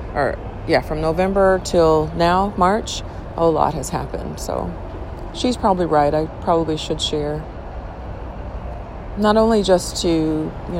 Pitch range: 155-185 Hz